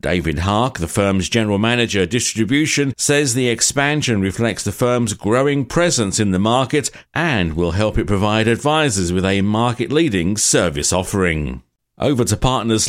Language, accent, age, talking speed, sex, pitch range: English, British, 50-69, 150 wpm, male, 100-140 Hz